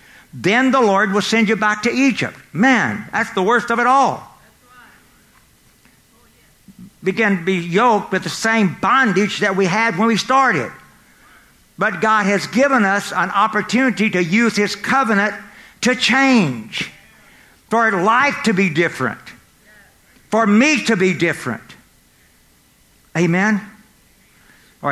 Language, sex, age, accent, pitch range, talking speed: English, male, 60-79, American, 125-200 Hz, 130 wpm